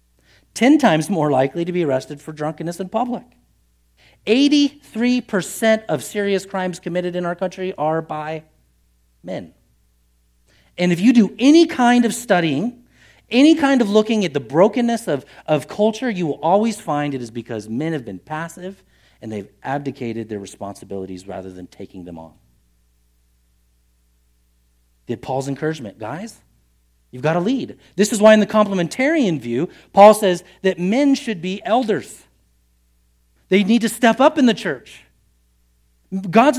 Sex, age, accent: male, 40-59, American